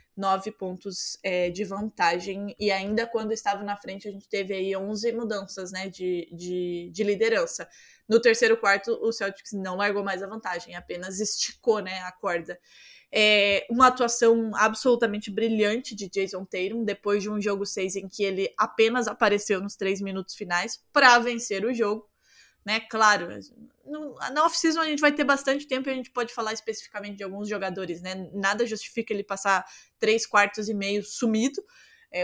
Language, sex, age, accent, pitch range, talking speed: Portuguese, female, 10-29, Brazilian, 195-235 Hz, 175 wpm